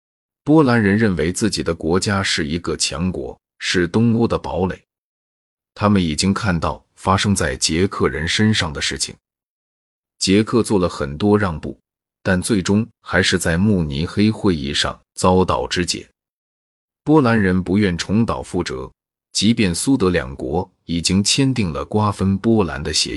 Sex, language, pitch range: male, Chinese, 85-105 Hz